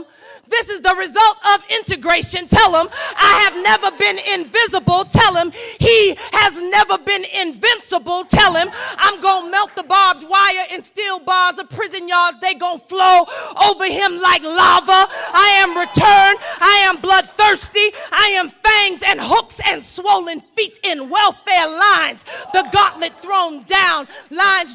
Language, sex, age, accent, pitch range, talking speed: English, female, 40-59, American, 320-390 Hz, 155 wpm